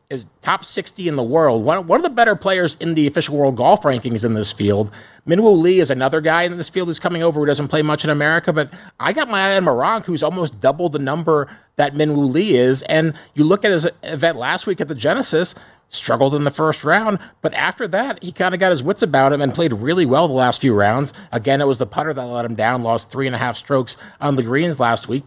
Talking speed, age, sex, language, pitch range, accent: 260 wpm, 30-49, male, English, 130-160 Hz, American